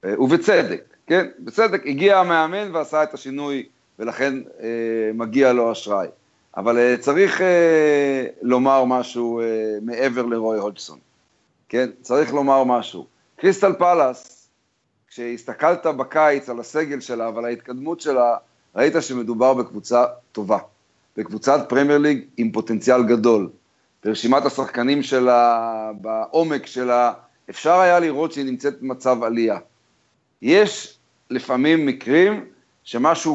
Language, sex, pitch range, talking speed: Hebrew, male, 120-155 Hz, 115 wpm